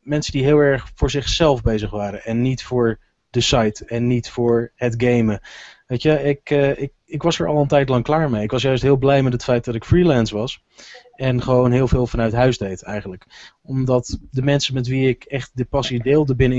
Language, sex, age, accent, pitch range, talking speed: Dutch, male, 20-39, Dutch, 115-135 Hz, 230 wpm